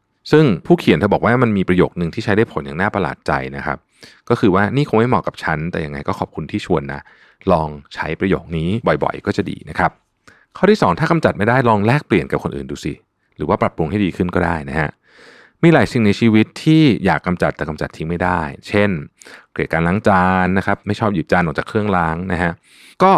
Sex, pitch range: male, 80-110 Hz